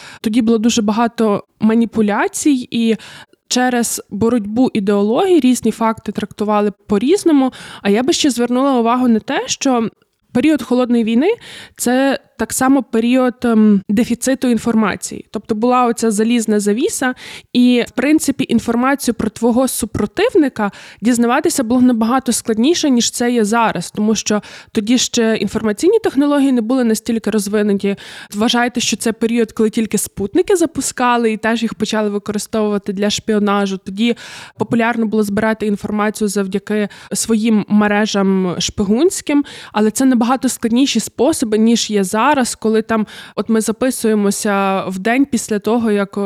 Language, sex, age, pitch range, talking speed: Ukrainian, female, 20-39, 210-250 Hz, 135 wpm